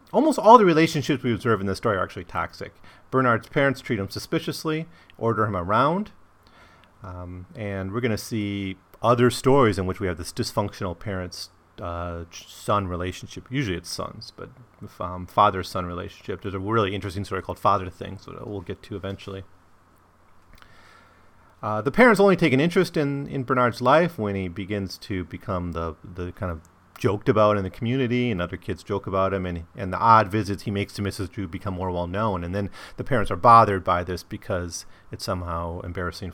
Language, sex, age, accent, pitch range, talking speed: English, male, 30-49, American, 90-115 Hz, 190 wpm